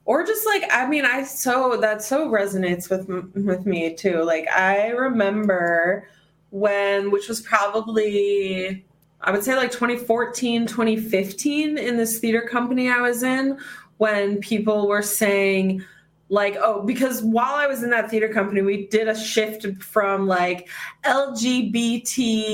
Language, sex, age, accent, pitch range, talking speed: English, female, 20-39, American, 205-265 Hz, 150 wpm